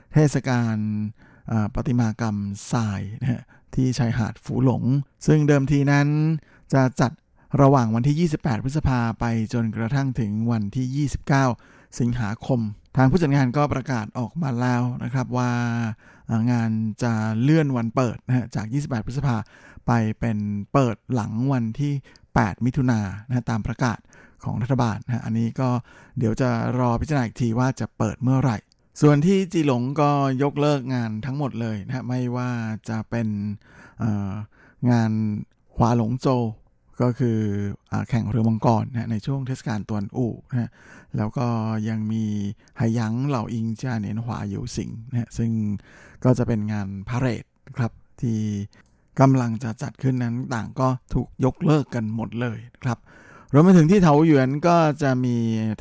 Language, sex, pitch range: Thai, male, 110-135 Hz